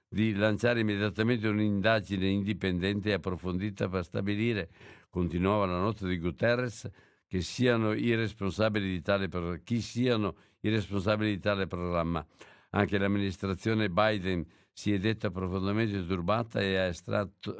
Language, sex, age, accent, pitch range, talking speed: Italian, male, 60-79, native, 90-105 Hz, 110 wpm